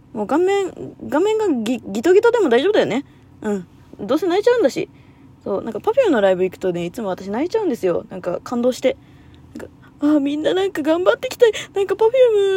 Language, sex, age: Japanese, female, 20-39